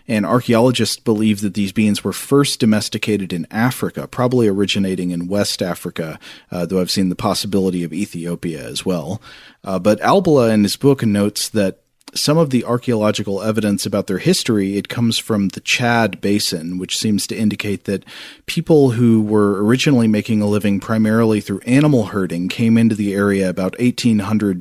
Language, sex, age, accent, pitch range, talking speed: English, male, 40-59, American, 95-115 Hz, 170 wpm